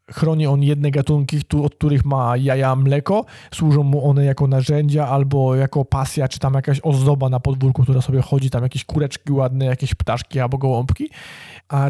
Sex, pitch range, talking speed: male, 135-160 Hz, 175 wpm